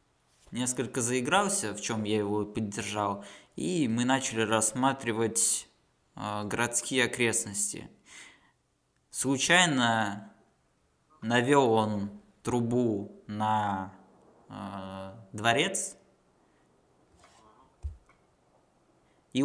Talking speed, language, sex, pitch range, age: 70 wpm, Russian, male, 105-130 Hz, 20-39